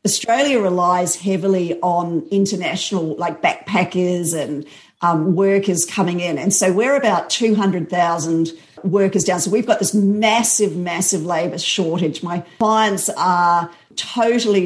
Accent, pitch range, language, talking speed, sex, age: Australian, 170-205 Hz, English, 125 wpm, female, 50-69